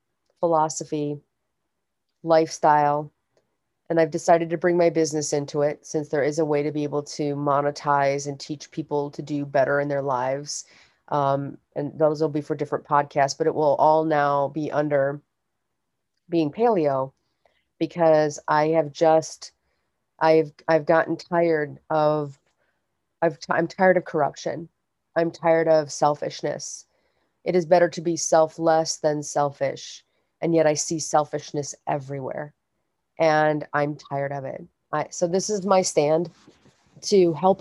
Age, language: 30-49, English